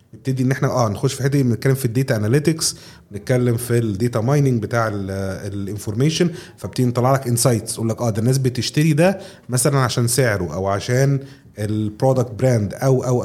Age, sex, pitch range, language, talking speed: 30-49, male, 110-145 Hz, Arabic, 175 wpm